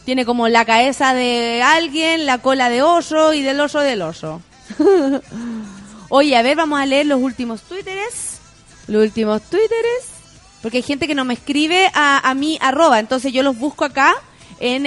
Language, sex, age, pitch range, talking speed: Spanish, female, 30-49, 260-350 Hz, 180 wpm